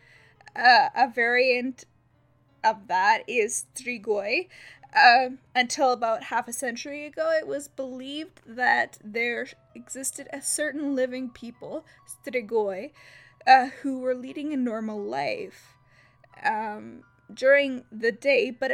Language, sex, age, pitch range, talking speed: English, female, 10-29, 220-275 Hz, 120 wpm